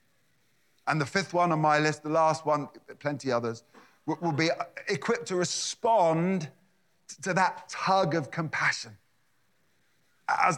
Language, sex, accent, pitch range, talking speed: English, male, British, 140-190 Hz, 130 wpm